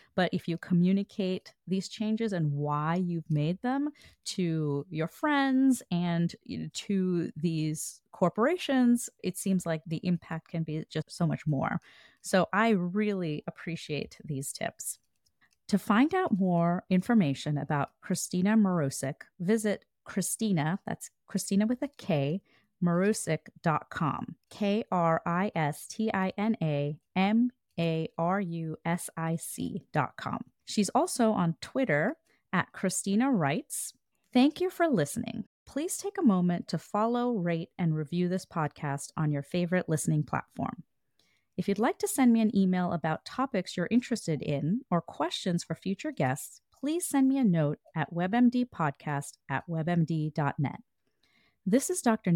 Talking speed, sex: 130 wpm, female